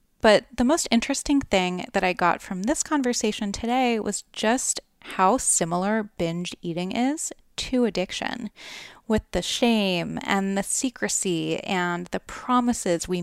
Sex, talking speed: female, 140 wpm